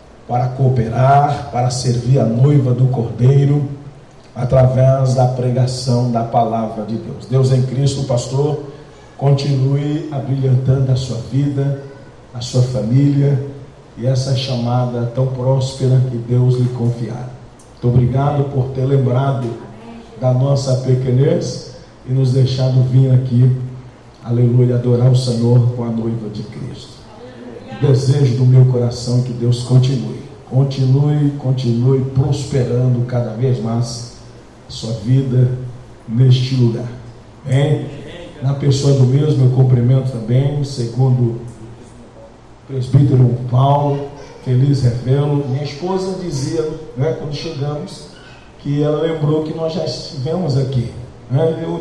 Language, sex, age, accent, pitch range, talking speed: Portuguese, male, 50-69, Brazilian, 125-140 Hz, 125 wpm